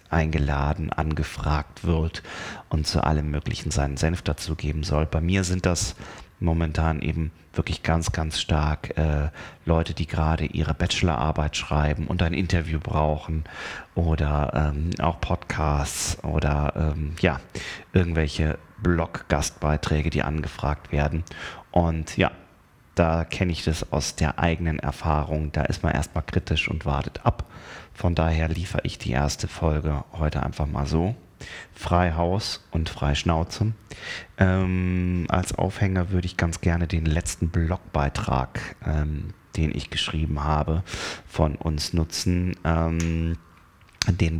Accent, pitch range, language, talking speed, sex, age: German, 75-90 Hz, German, 135 wpm, male, 30-49